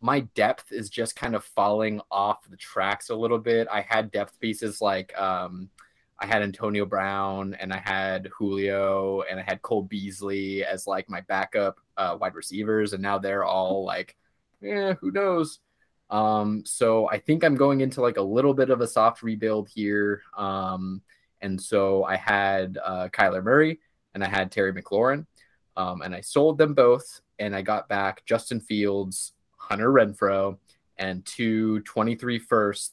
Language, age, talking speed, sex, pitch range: English, 20-39, 170 wpm, male, 95-115 Hz